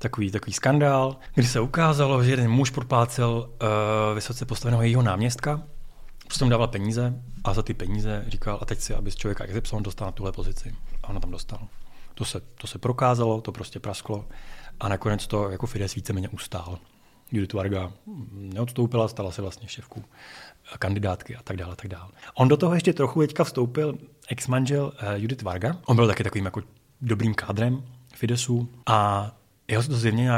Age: 30-49